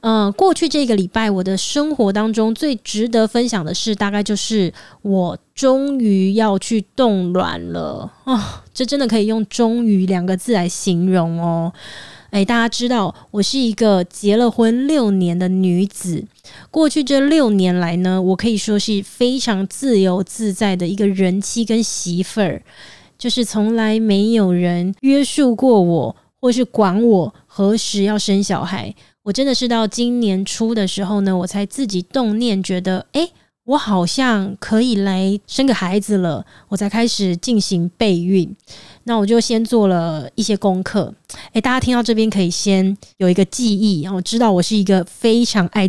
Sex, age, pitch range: female, 20-39, 190-240 Hz